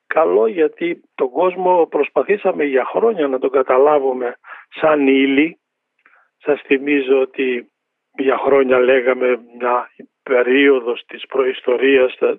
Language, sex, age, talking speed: Greek, male, 50-69, 105 wpm